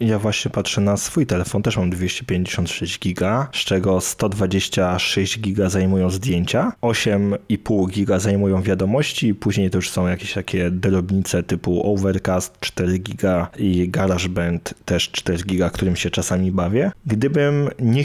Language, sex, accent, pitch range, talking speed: Polish, male, native, 95-110 Hz, 140 wpm